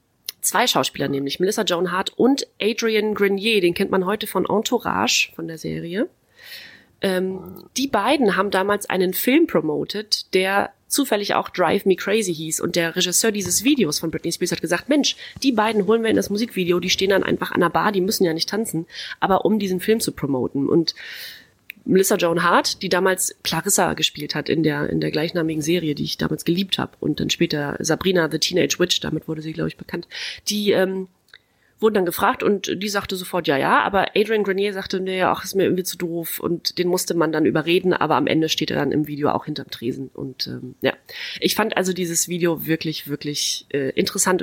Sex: female